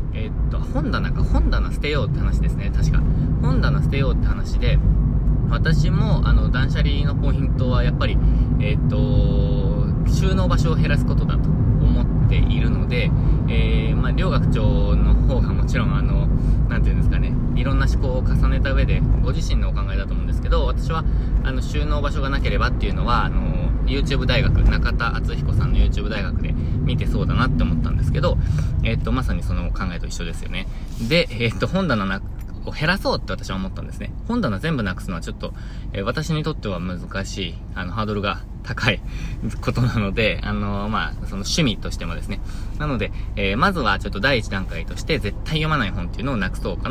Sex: male